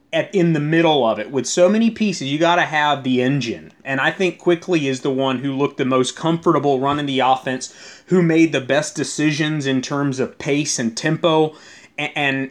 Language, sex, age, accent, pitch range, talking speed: English, male, 30-49, American, 130-170 Hz, 205 wpm